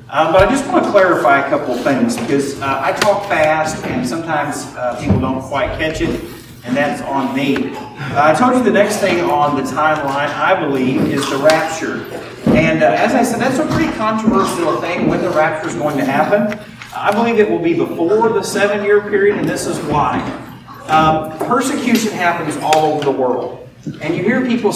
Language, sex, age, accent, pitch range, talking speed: English, male, 40-59, American, 150-220 Hz, 200 wpm